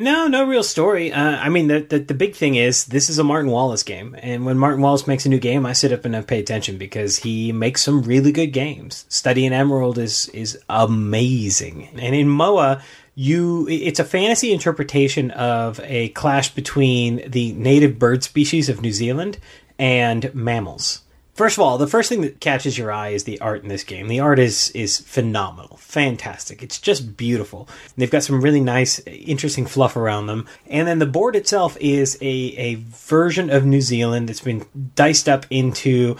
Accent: American